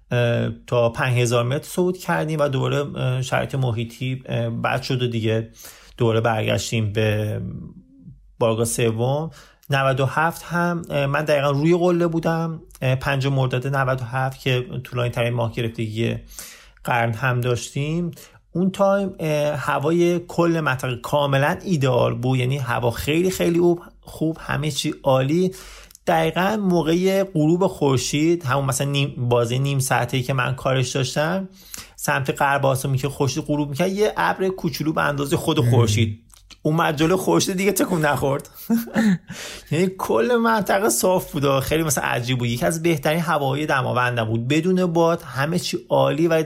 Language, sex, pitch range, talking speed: Persian, male, 125-165 Hz, 145 wpm